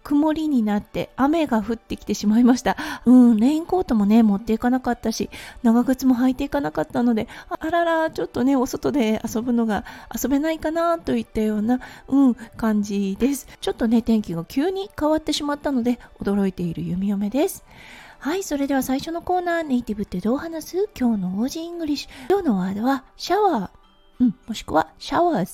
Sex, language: female, Japanese